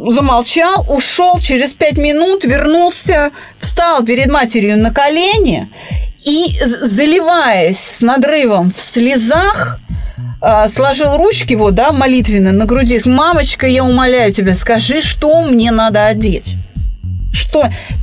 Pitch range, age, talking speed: 220-310 Hz, 30-49, 115 wpm